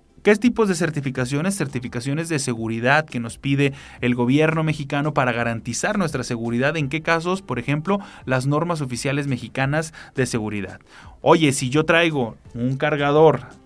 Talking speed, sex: 150 wpm, male